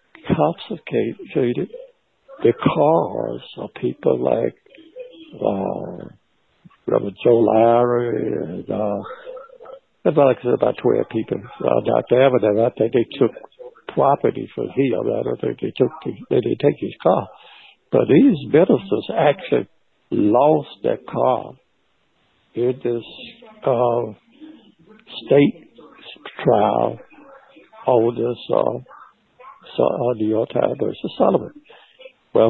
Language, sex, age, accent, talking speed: English, male, 60-79, American, 110 wpm